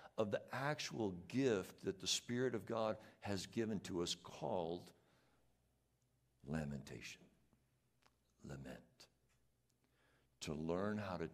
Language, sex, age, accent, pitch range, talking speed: English, male, 60-79, American, 75-105 Hz, 105 wpm